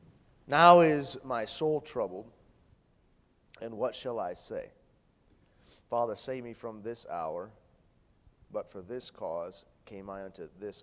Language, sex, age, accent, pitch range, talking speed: English, male, 30-49, American, 100-130 Hz, 135 wpm